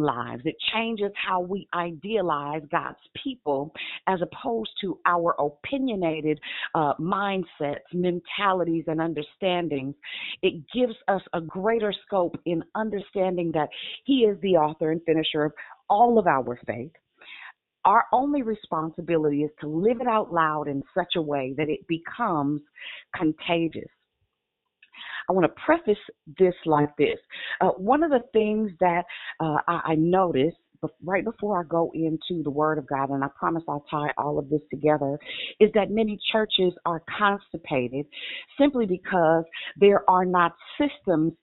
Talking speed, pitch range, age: 145 wpm, 155-205 Hz, 40-59